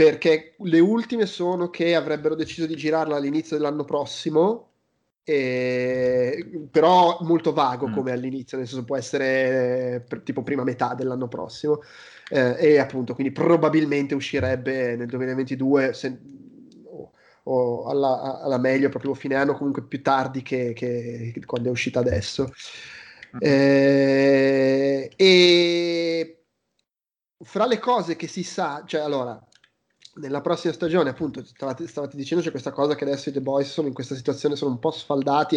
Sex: male